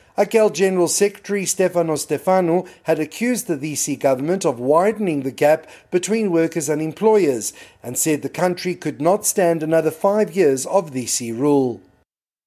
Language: English